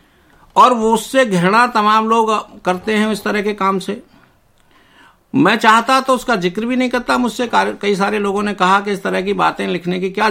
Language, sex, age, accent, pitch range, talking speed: Hindi, male, 60-79, native, 155-215 Hz, 205 wpm